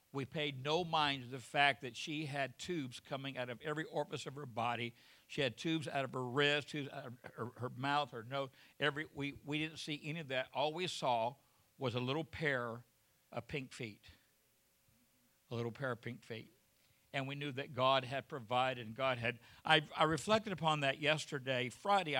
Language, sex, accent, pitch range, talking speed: English, male, American, 130-165 Hz, 200 wpm